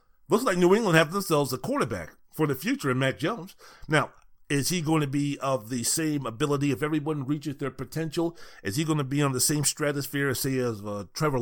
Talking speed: 215 wpm